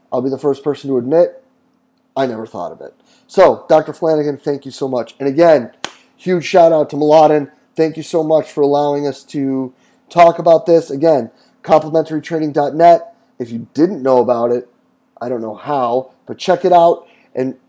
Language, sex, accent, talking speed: English, male, American, 185 wpm